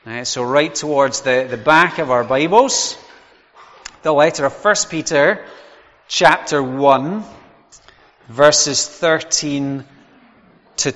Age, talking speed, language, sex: 30-49, 110 wpm, English, male